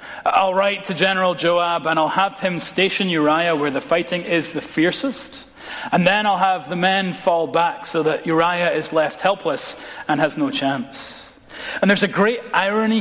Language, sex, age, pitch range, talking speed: English, male, 40-59, 155-200 Hz, 185 wpm